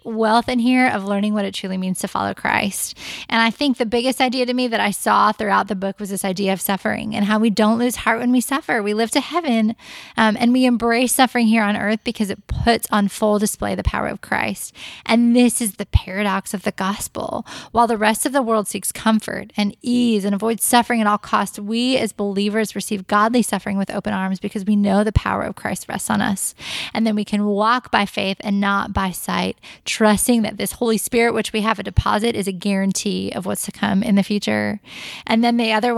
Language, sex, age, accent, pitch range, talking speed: English, female, 10-29, American, 200-230 Hz, 235 wpm